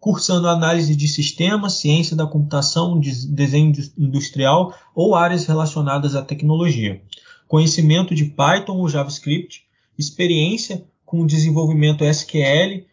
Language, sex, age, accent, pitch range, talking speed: Portuguese, male, 20-39, Brazilian, 145-180 Hz, 110 wpm